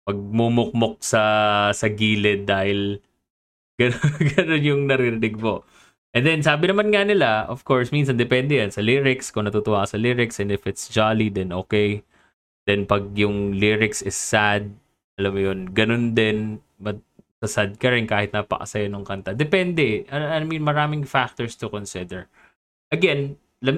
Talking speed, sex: 160 wpm, male